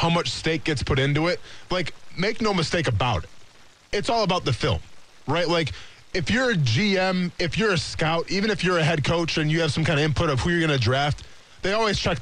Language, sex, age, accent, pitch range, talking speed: English, male, 20-39, American, 135-180 Hz, 245 wpm